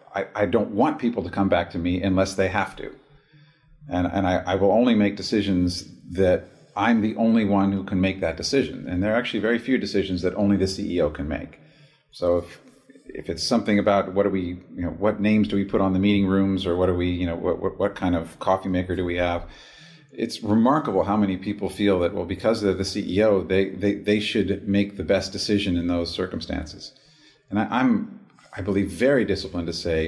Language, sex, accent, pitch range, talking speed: English, male, American, 90-105 Hz, 225 wpm